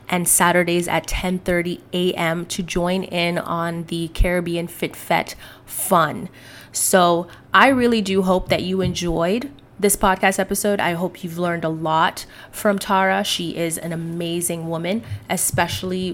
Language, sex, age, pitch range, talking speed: English, female, 20-39, 170-190 Hz, 150 wpm